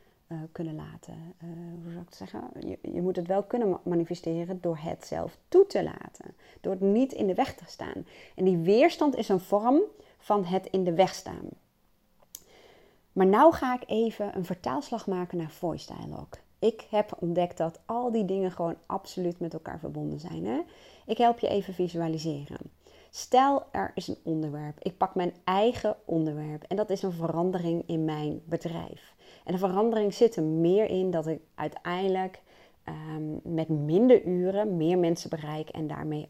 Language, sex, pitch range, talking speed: Dutch, female, 160-200 Hz, 180 wpm